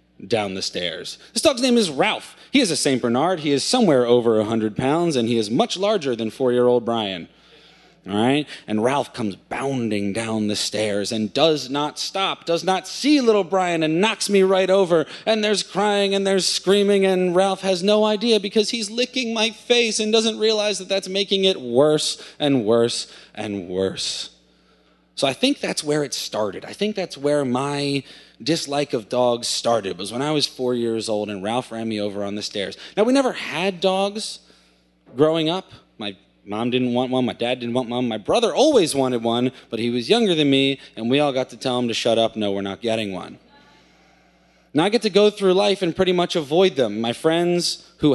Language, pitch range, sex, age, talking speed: English, 115-195 Hz, male, 30-49, 210 wpm